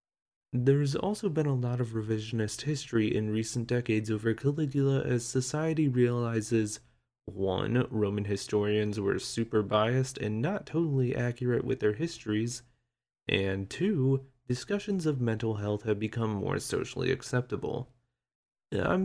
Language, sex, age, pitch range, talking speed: English, male, 20-39, 110-140 Hz, 130 wpm